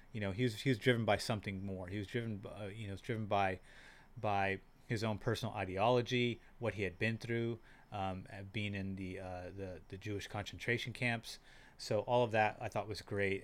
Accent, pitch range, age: American, 100-125 Hz, 30-49